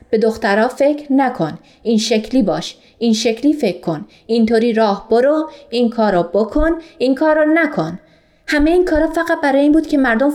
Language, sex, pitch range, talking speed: Persian, female, 220-280 Hz, 170 wpm